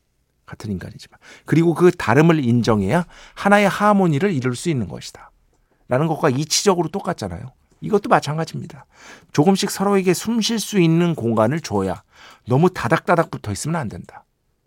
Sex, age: male, 50-69